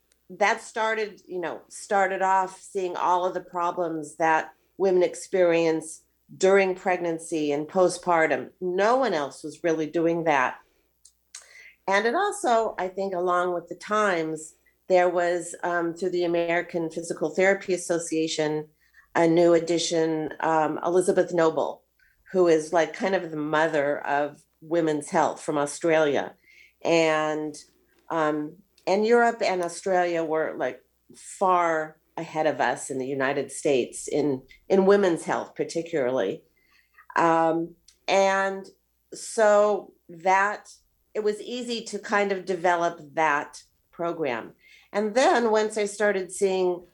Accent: American